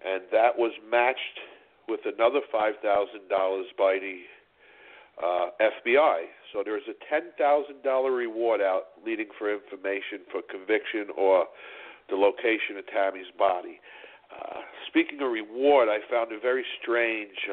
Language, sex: English, male